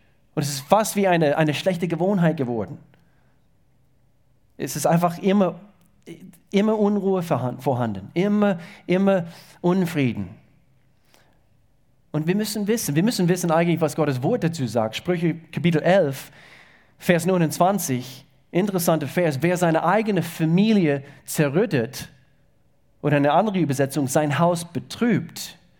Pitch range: 130-170 Hz